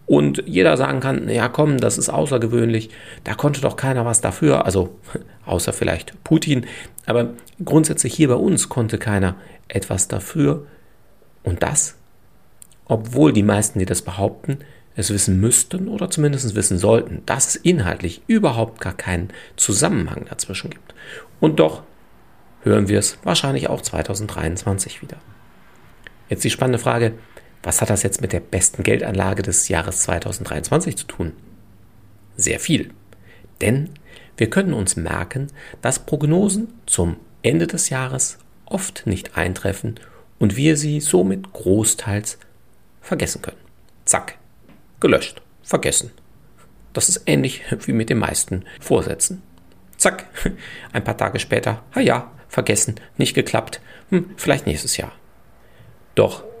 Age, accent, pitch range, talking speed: 40-59, German, 95-140 Hz, 135 wpm